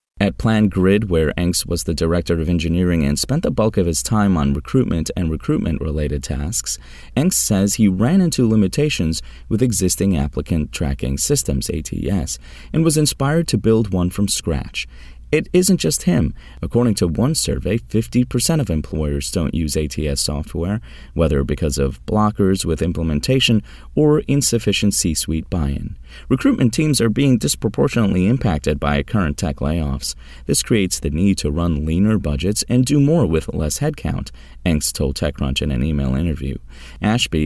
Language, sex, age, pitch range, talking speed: English, male, 30-49, 75-110 Hz, 160 wpm